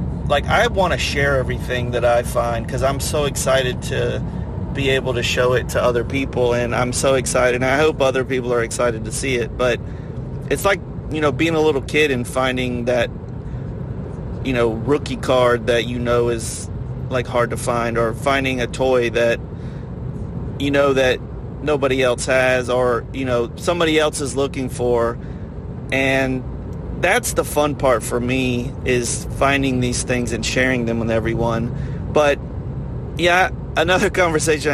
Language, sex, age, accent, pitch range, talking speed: English, male, 30-49, American, 115-135 Hz, 170 wpm